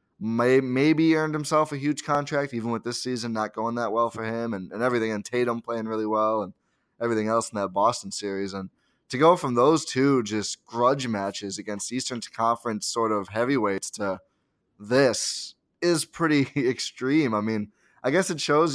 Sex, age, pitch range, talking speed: male, 20-39, 105-125 Hz, 180 wpm